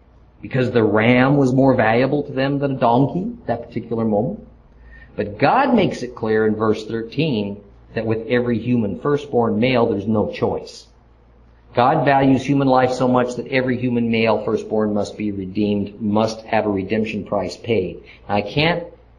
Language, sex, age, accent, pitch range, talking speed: English, male, 50-69, American, 100-130 Hz, 170 wpm